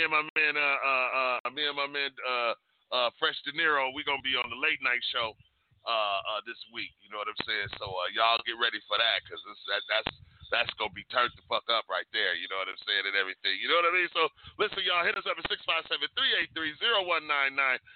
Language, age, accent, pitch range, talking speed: English, 40-59, American, 120-145 Hz, 275 wpm